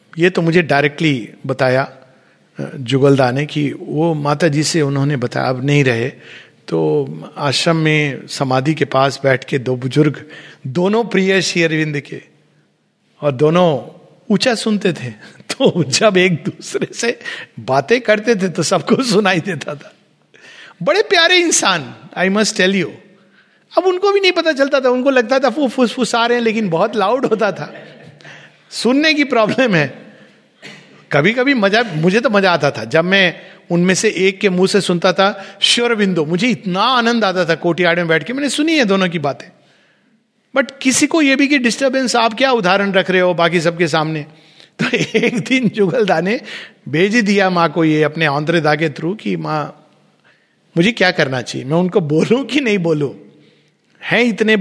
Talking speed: 175 wpm